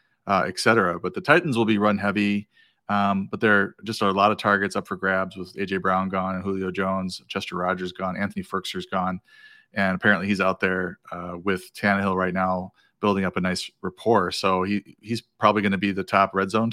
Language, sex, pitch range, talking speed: English, male, 95-105 Hz, 215 wpm